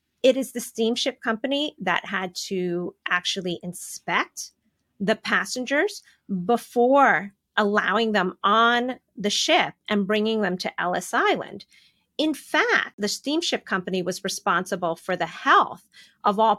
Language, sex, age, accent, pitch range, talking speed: English, female, 30-49, American, 195-260 Hz, 130 wpm